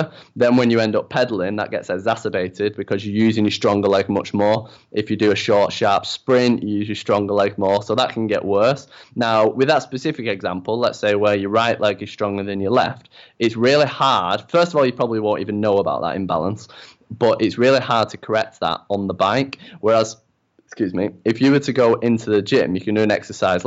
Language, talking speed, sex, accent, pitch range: English, 230 wpm, male, British, 100-125 Hz